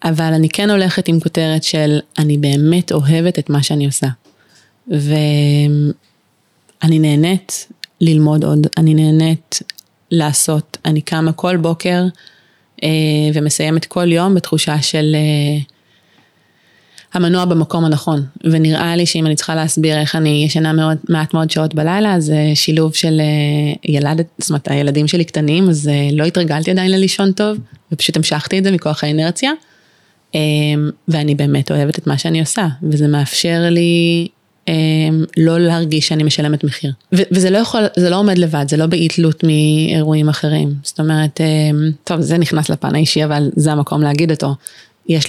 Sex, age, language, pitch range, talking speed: female, 20-39, Hebrew, 150-170 Hz, 150 wpm